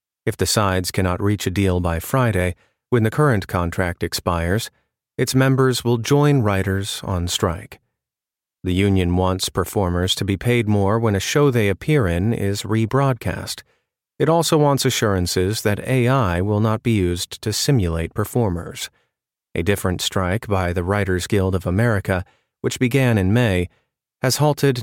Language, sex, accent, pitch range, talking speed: English, male, American, 95-130 Hz, 155 wpm